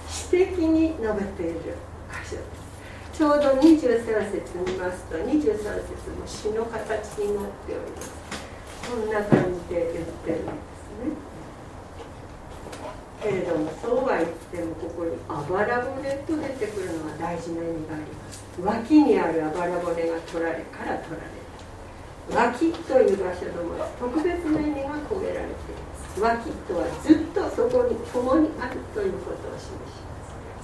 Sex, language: female, Japanese